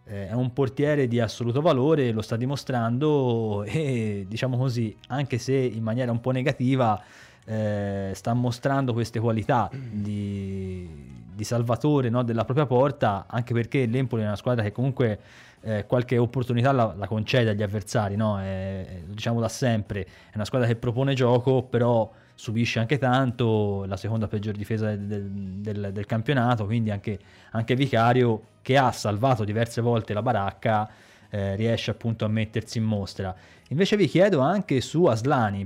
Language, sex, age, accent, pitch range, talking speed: Italian, male, 20-39, native, 105-130 Hz, 160 wpm